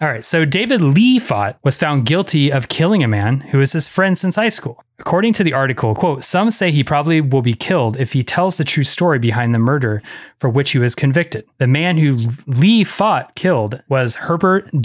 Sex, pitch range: male, 120-160 Hz